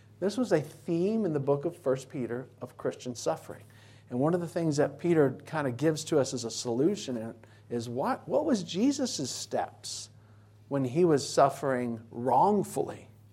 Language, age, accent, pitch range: English, 40-59, American, 115-175 Hz